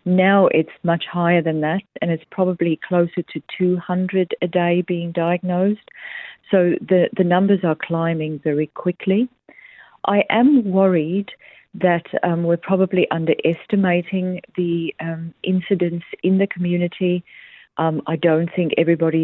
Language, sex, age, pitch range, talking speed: English, female, 40-59, 160-185 Hz, 135 wpm